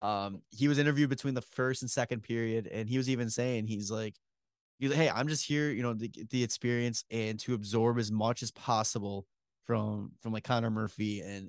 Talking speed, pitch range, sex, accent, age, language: 215 wpm, 110-130 Hz, male, American, 20-39, English